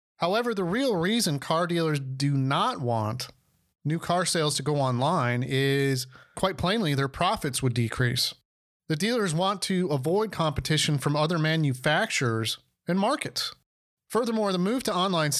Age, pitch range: 30-49, 130-170 Hz